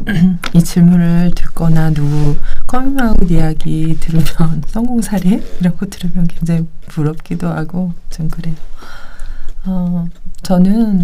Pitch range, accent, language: 155-190 Hz, native, Korean